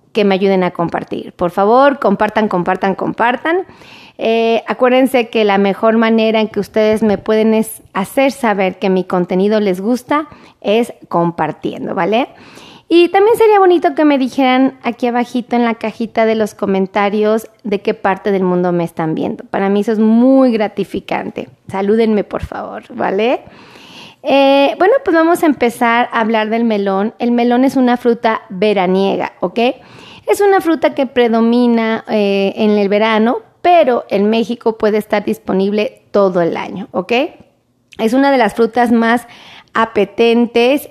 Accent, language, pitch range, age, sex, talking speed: Mexican, Spanish, 200-245 Hz, 30-49, female, 160 wpm